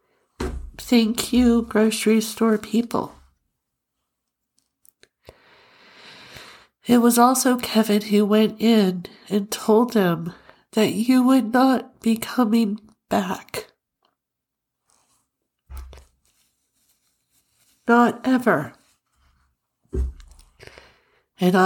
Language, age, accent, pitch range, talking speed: English, 60-79, American, 185-230 Hz, 70 wpm